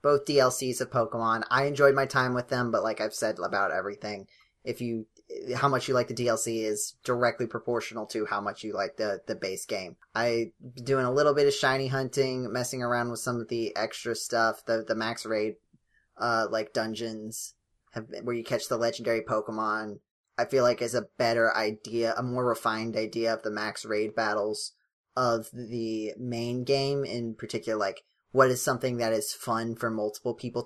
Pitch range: 110-130 Hz